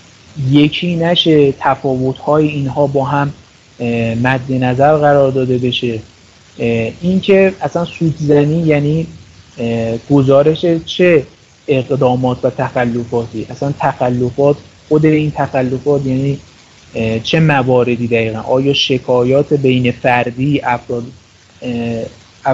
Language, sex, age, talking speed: Persian, male, 30-49, 90 wpm